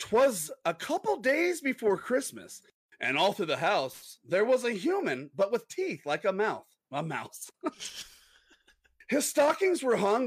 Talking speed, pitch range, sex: 160 wpm, 175-285 Hz, male